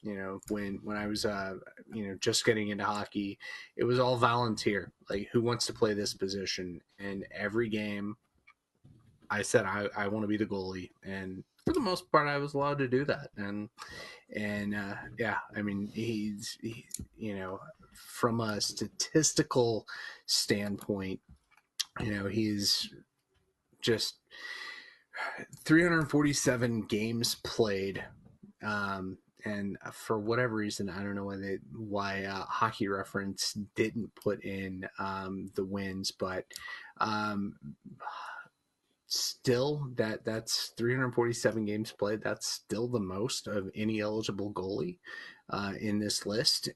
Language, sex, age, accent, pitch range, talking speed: English, male, 30-49, American, 100-120 Hz, 140 wpm